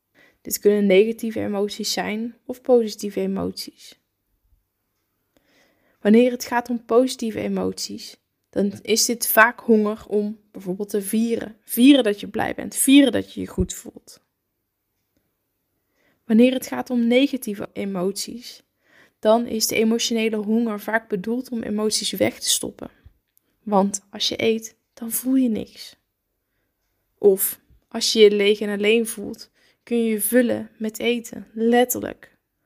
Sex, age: female, 20-39